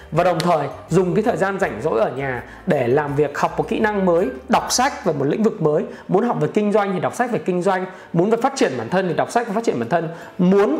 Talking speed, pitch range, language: 290 wpm, 165-235 Hz, Vietnamese